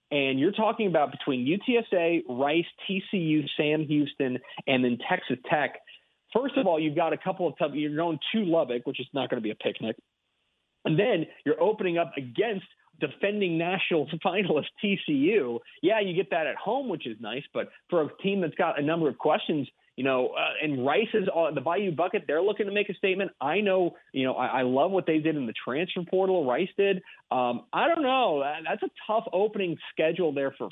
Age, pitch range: 40-59, 140-200 Hz